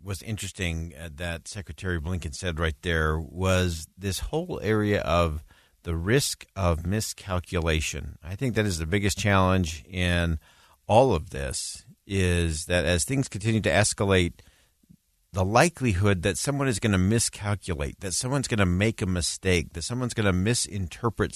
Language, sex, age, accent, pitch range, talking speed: English, male, 50-69, American, 85-110 Hz, 155 wpm